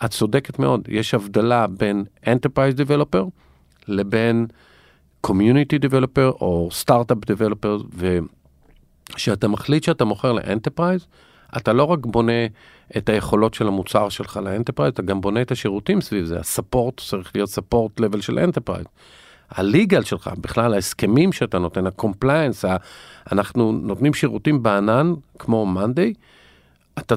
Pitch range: 100-130 Hz